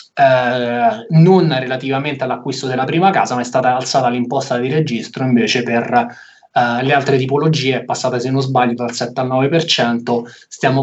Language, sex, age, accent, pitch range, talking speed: Italian, male, 20-39, native, 125-150 Hz, 165 wpm